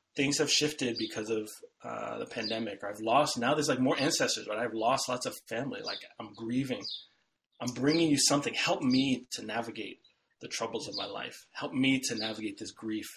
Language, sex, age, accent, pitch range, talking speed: English, male, 30-49, American, 120-155 Hz, 195 wpm